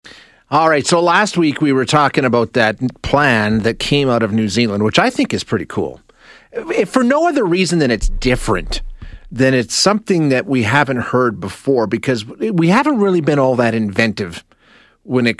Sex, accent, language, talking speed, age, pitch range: male, American, English, 185 wpm, 40-59, 110-150 Hz